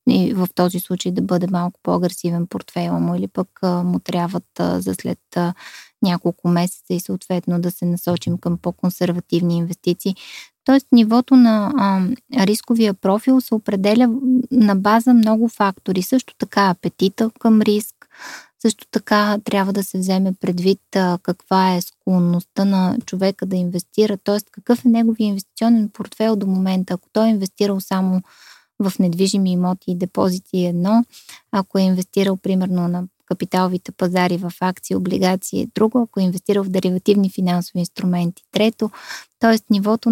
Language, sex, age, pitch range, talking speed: Bulgarian, female, 20-39, 185-225 Hz, 155 wpm